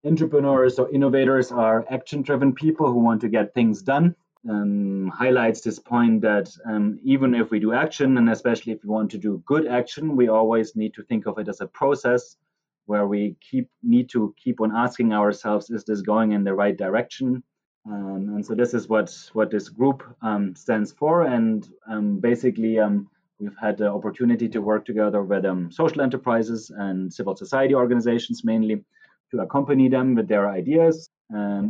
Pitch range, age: 110-150 Hz, 30-49